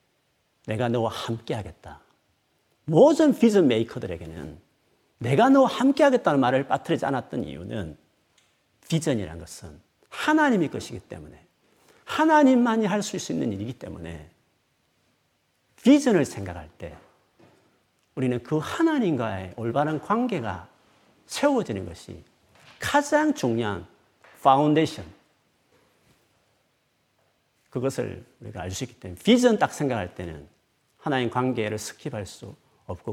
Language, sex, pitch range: Korean, male, 105-155 Hz